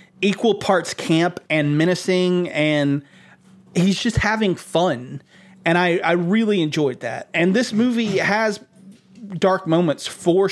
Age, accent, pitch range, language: 30-49, American, 155-195 Hz, English